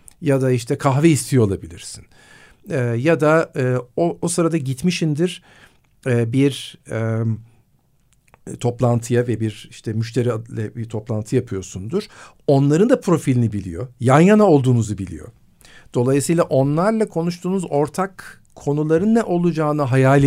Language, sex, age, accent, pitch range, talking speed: Turkish, male, 50-69, native, 120-160 Hz, 120 wpm